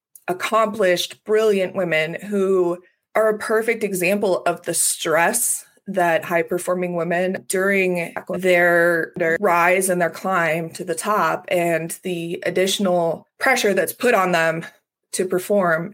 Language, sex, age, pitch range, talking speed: English, female, 20-39, 170-205 Hz, 130 wpm